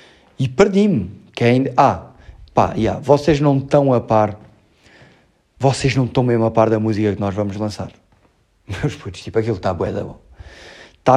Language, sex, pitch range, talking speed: Portuguese, male, 120-160 Hz, 160 wpm